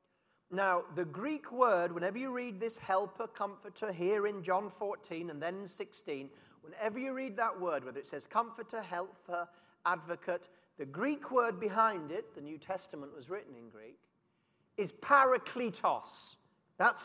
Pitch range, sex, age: 180-260 Hz, male, 40-59